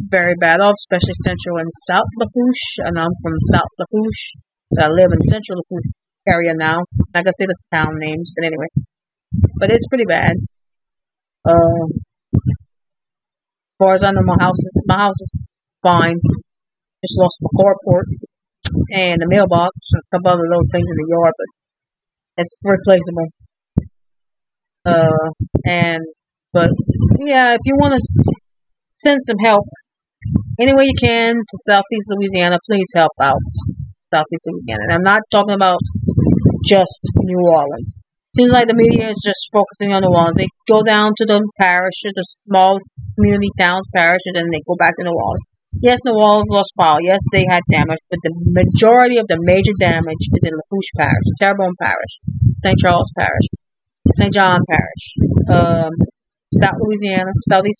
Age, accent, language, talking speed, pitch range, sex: 40-59, American, English, 165 wpm, 160-205 Hz, female